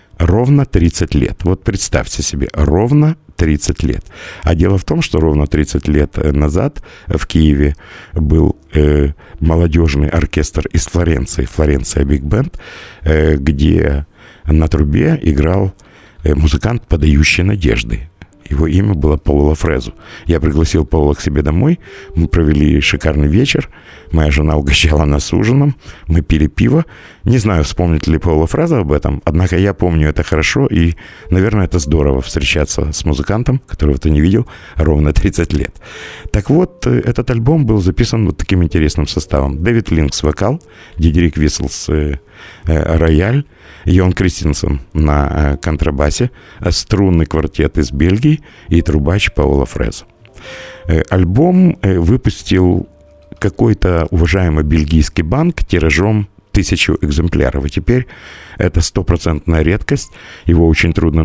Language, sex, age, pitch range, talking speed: Russian, male, 50-69, 75-95 Hz, 125 wpm